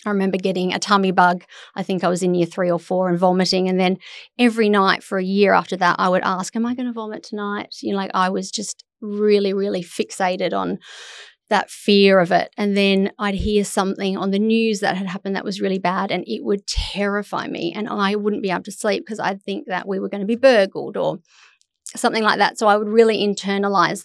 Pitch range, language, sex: 190-215 Hz, English, female